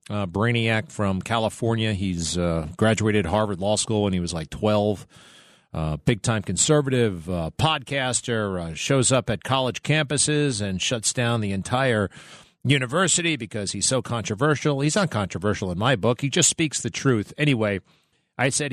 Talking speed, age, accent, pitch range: 160 wpm, 40-59, American, 100-135 Hz